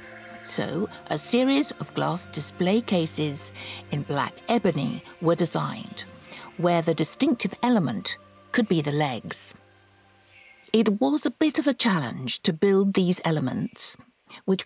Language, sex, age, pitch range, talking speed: English, female, 60-79, 160-225 Hz, 130 wpm